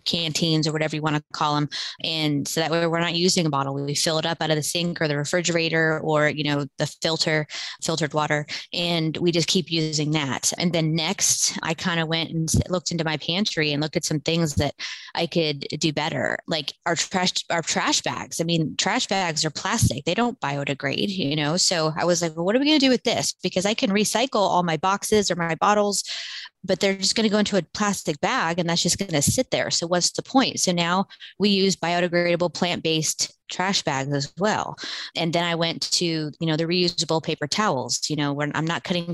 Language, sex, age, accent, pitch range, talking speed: English, female, 20-39, American, 155-185 Hz, 230 wpm